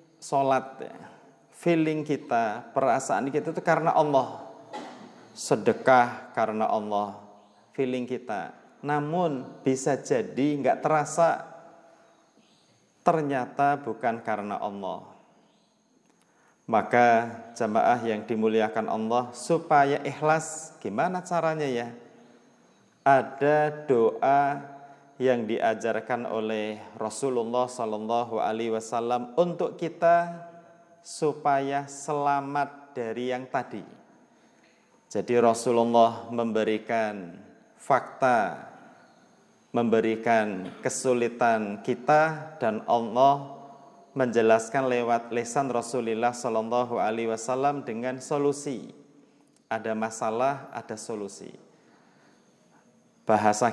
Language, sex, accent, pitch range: Indonesian, male, native, 115-150 Hz